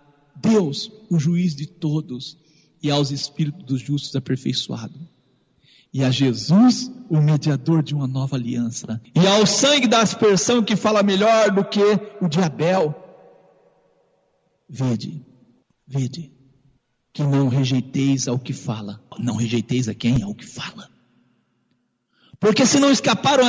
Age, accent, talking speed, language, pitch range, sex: 50-69, Brazilian, 130 wpm, Portuguese, 140-205 Hz, male